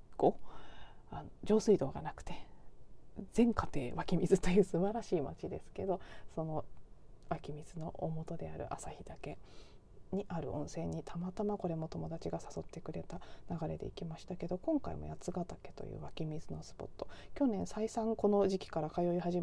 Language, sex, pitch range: Japanese, female, 160-210 Hz